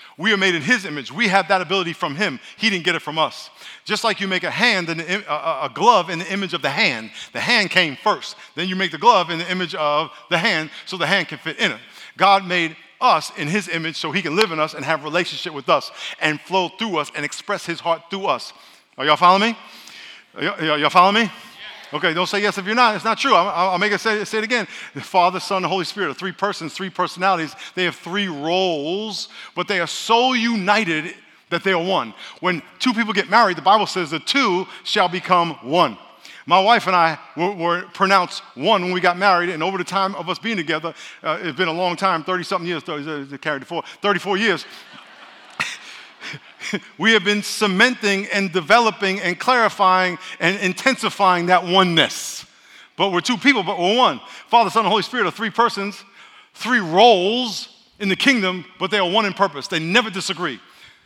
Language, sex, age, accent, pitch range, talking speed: English, male, 50-69, American, 170-210 Hz, 210 wpm